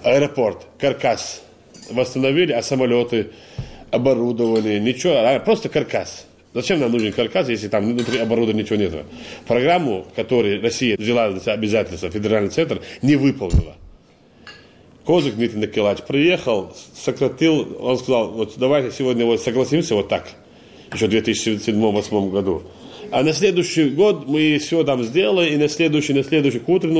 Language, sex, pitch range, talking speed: Russian, male, 110-145 Hz, 135 wpm